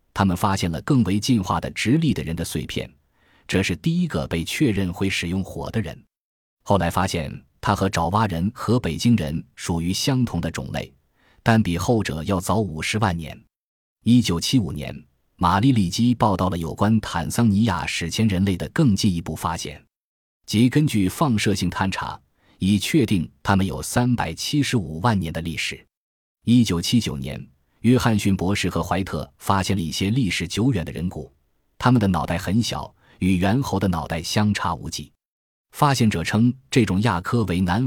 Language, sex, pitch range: Chinese, male, 85-115 Hz